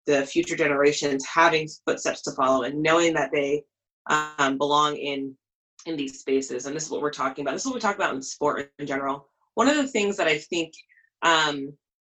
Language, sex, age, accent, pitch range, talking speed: English, female, 20-39, American, 145-175 Hz, 210 wpm